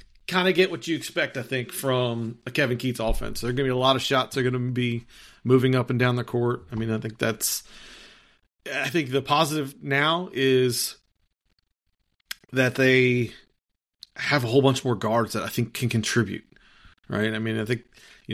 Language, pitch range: English, 110-130 Hz